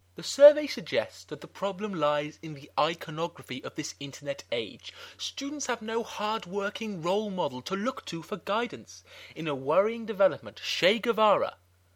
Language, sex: English, male